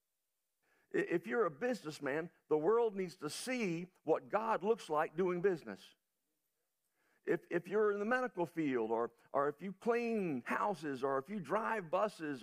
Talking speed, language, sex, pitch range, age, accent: 160 wpm, English, male, 160-215 Hz, 50-69, American